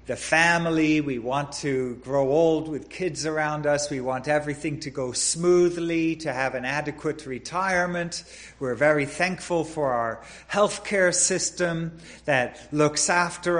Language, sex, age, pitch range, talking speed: English, male, 50-69, 145-210 Hz, 140 wpm